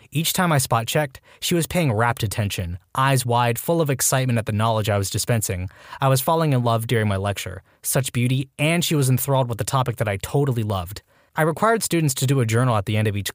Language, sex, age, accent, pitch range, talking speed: English, male, 20-39, American, 110-150 Hz, 240 wpm